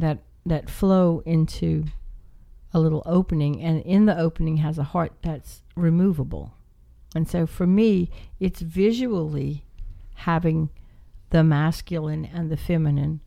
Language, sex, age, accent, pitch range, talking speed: English, female, 60-79, American, 140-175 Hz, 125 wpm